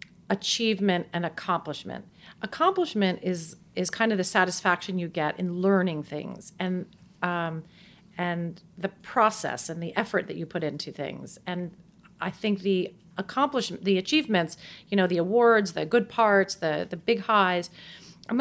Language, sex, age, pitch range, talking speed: English, female, 40-59, 180-230 Hz, 155 wpm